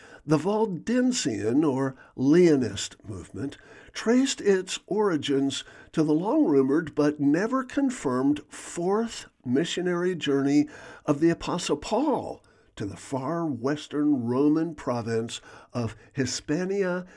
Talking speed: 95 wpm